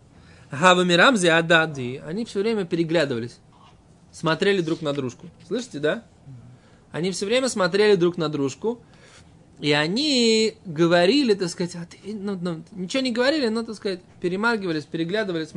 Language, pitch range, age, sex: Russian, 145-200 Hz, 20-39, male